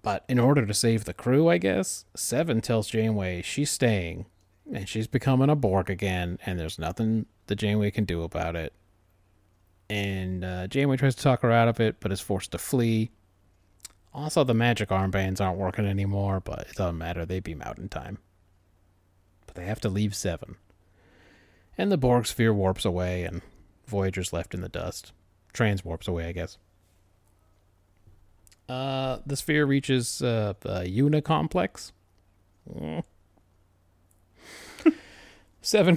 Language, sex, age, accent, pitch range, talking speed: English, male, 30-49, American, 90-120 Hz, 150 wpm